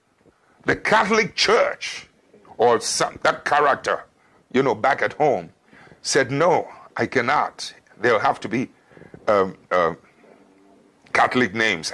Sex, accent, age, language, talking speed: male, Nigerian, 60-79, English, 120 wpm